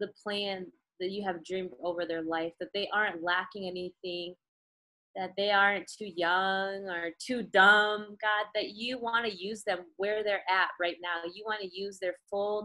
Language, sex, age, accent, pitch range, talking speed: English, female, 20-39, American, 180-215 Hz, 190 wpm